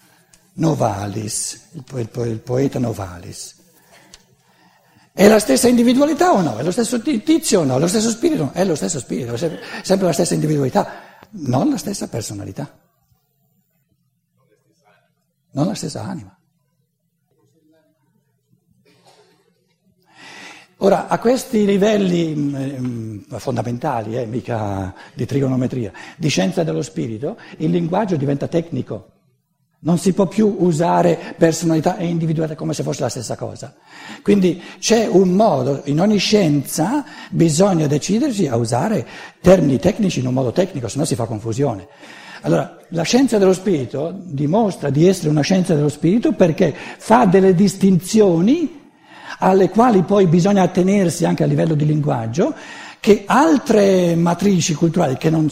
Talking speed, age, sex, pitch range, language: 130 wpm, 60-79, male, 140-195 Hz, Italian